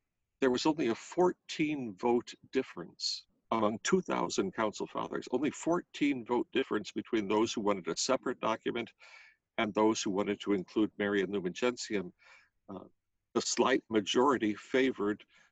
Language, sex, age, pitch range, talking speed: English, male, 60-79, 105-155 Hz, 145 wpm